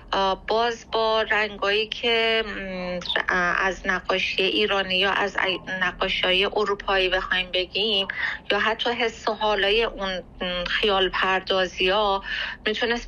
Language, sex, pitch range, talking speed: Persian, female, 190-220 Hz, 110 wpm